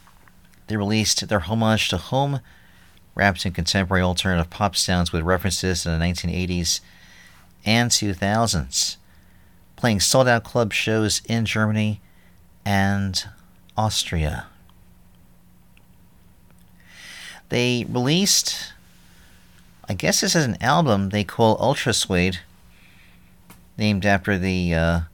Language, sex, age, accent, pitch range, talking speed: English, male, 50-69, American, 90-110 Hz, 100 wpm